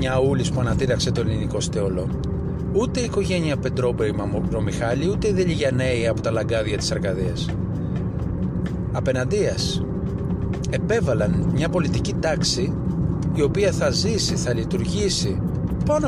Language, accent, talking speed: Greek, native, 120 wpm